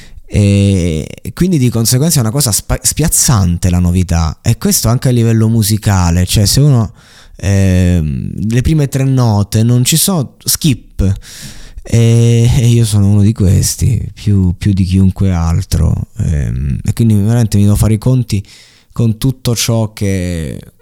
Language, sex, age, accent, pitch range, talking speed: Italian, male, 20-39, native, 100-125 Hz, 155 wpm